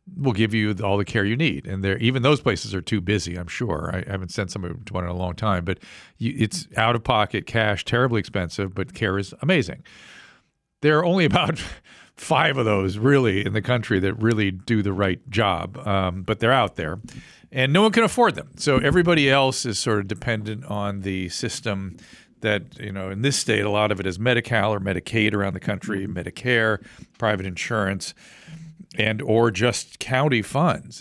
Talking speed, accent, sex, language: 200 wpm, American, male, English